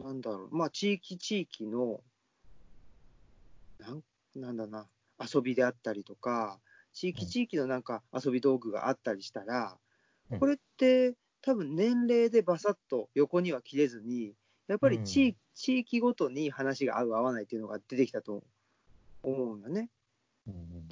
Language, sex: Japanese, male